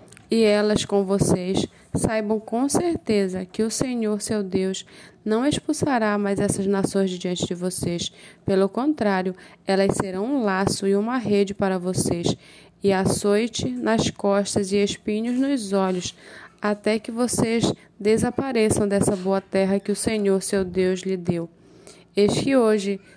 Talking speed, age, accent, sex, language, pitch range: 150 wpm, 20-39, Brazilian, female, Portuguese, 190-220 Hz